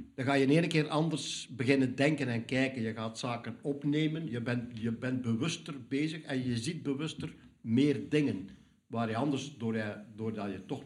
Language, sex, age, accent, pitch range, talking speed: Dutch, male, 60-79, Dutch, 120-145 Hz, 195 wpm